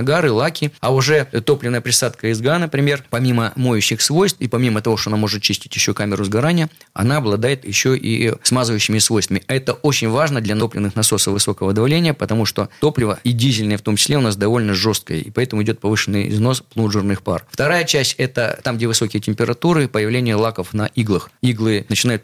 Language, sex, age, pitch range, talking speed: Russian, male, 20-39, 105-135 Hz, 180 wpm